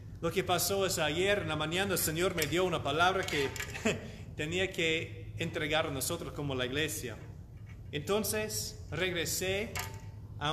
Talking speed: 150 wpm